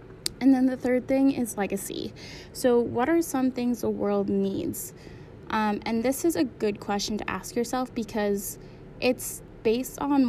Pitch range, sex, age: 200-240 Hz, female, 10-29